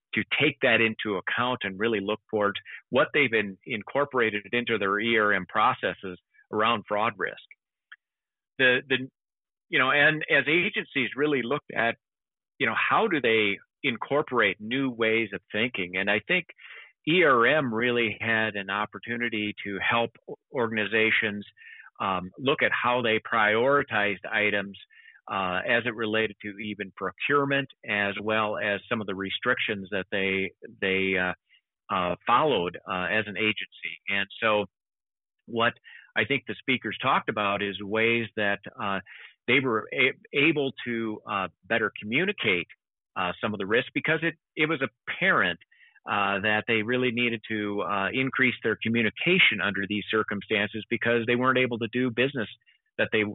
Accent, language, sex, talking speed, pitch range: American, English, male, 150 wpm, 100-120 Hz